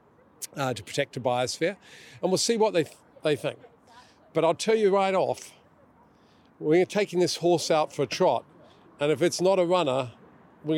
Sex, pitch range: male, 130-170 Hz